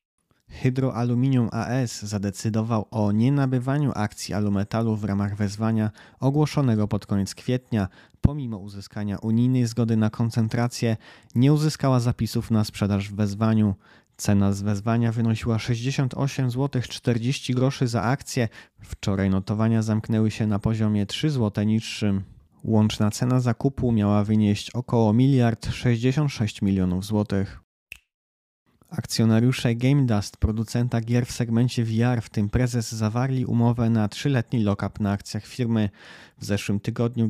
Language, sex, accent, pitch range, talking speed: Polish, male, native, 105-125 Hz, 120 wpm